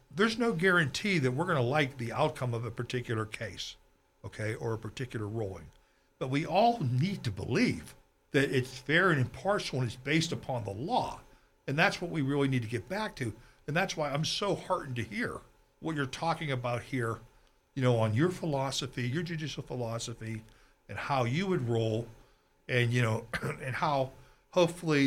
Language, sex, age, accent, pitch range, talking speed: English, male, 60-79, American, 115-155 Hz, 185 wpm